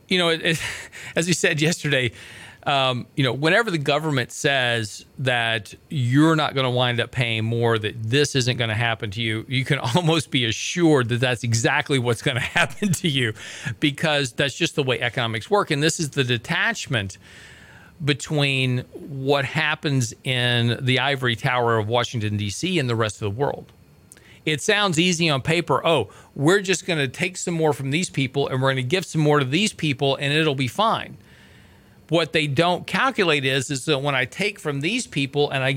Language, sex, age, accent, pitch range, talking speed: English, male, 40-59, American, 120-160 Hz, 195 wpm